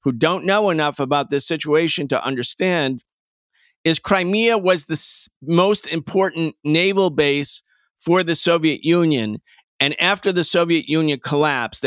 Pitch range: 145-185 Hz